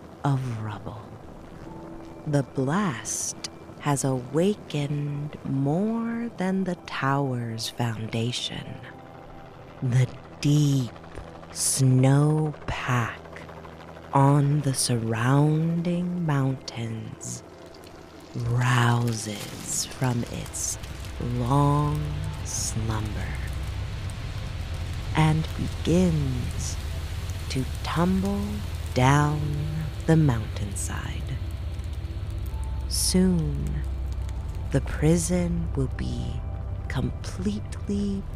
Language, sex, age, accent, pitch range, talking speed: English, female, 30-49, American, 85-135 Hz, 60 wpm